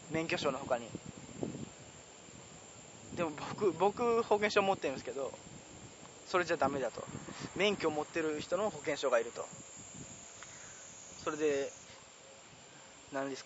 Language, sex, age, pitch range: Japanese, male, 20-39, 155-205 Hz